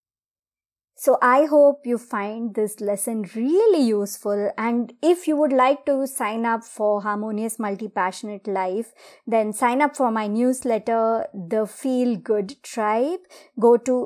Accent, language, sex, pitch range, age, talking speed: Indian, English, male, 210-275 Hz, 30-49, 140 wpm